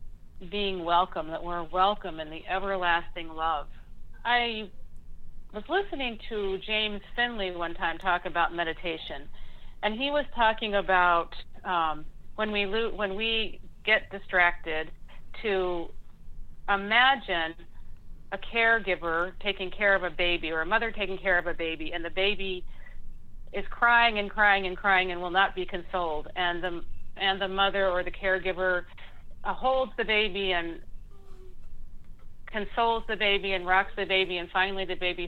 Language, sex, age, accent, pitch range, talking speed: English, female, 40-59, American, 165-205 Hz, 145 wpm